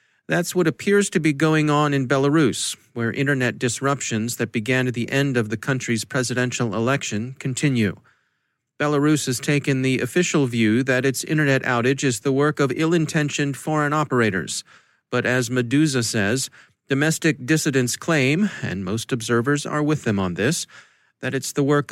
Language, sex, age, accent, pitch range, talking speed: English, male, 40-59, American, 120-145 Hz, 160 wpm